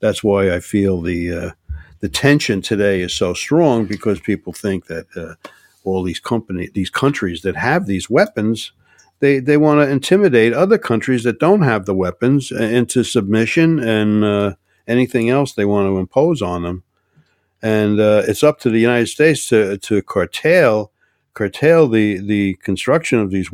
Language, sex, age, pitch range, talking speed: English, male, 50-69, 90-110 Hz, 170 wpm